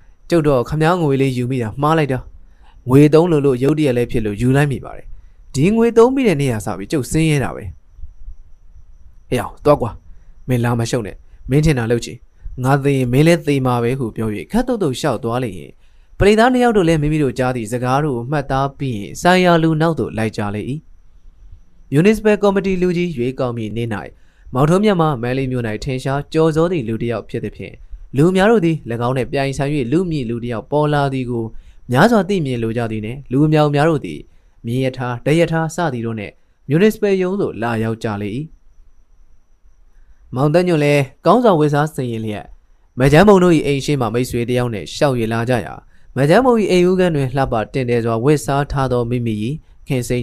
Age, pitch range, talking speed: 20-39, 110-155 Hz, 40 wpm